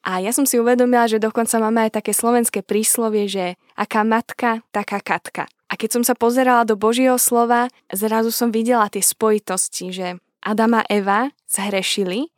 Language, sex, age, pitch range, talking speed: Slovak, female, 10-29, 205-235 Hz, 170 wpm